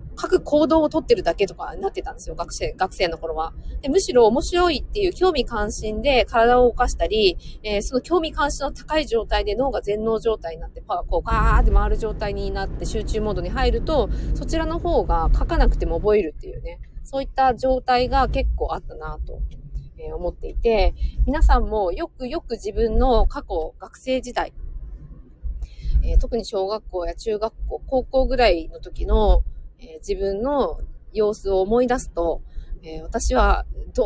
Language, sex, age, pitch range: Japanese, female, 20-39, 180-265 Hz